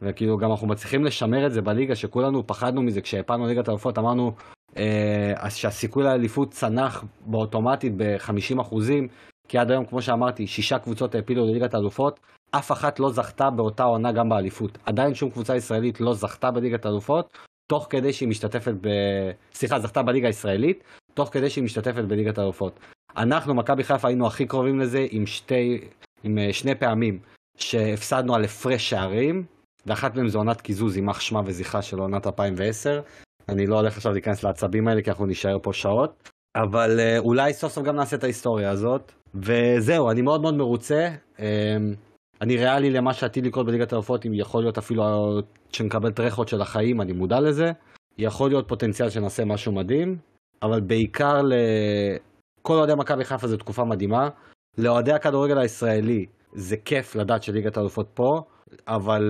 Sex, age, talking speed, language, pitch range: male, 30-49, 145 wpm, Hebrew, 105-130 Hz